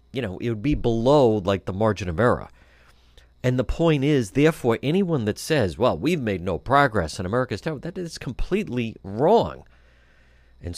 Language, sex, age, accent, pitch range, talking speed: English, male, 50-69, American, 85-140 Hz, 180 wpm